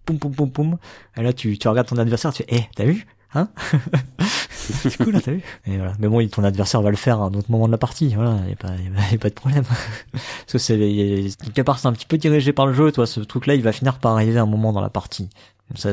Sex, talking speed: male, 280 wpm